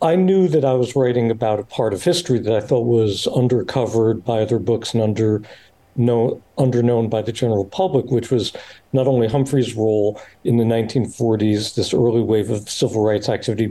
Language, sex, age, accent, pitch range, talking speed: English, male, 60-79, American, 110-130 Hz, 190 wpm